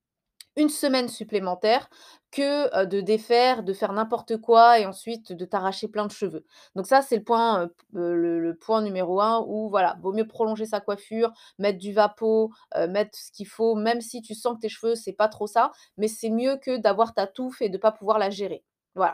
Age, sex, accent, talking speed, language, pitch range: 20-39, female, French, 210 wpm, French, 200-240 Hz